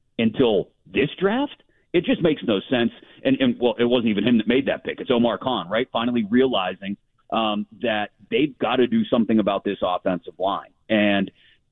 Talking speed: 190 wpm